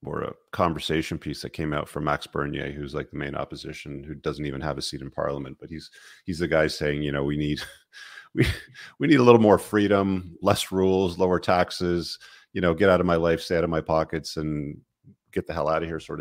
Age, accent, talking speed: 40-59, American, 235 wpm